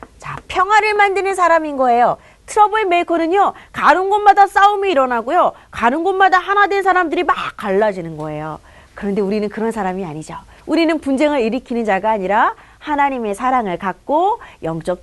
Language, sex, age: Korean, female, 30-49